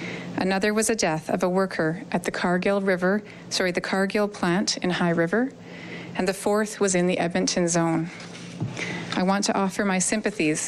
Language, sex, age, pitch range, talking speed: English, female, 30-49, 175-205 Hz, 180 wpm